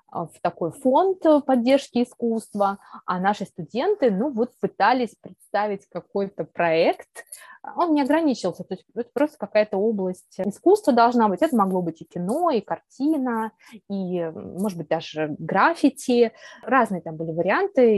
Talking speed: 140 wpm